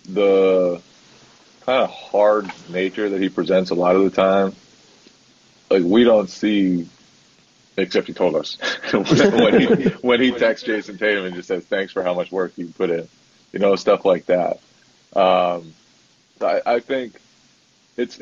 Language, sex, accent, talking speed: English, male, American, 160 wpm